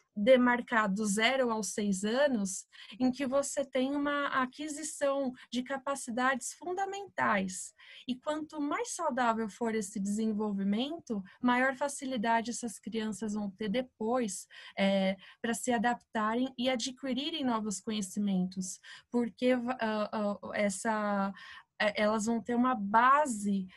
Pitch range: 210-260 Hz